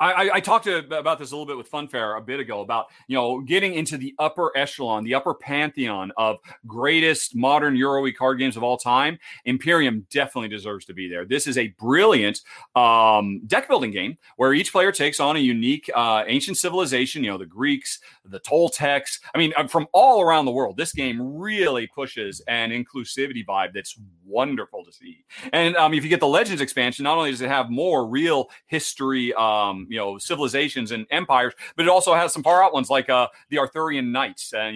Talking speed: 200 wpm